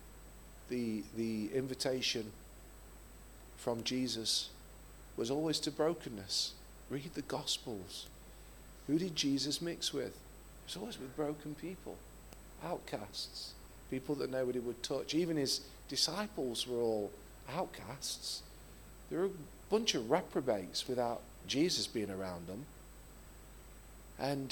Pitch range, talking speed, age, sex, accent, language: 120-150 Hz, 115 wpm, 40-59, male, British, English